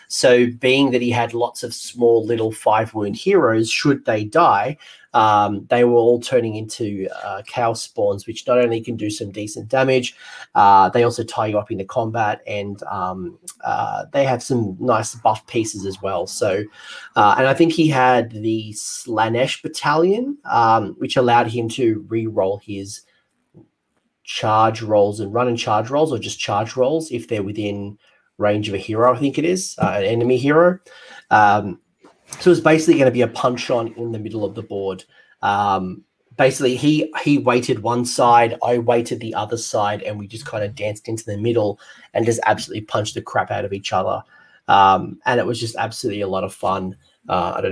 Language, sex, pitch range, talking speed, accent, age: English, male, 110-130 Hz, 190 wpm, Australian, 30-49